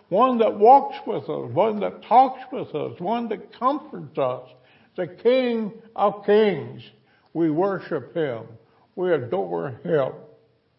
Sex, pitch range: male, 130-165 Hz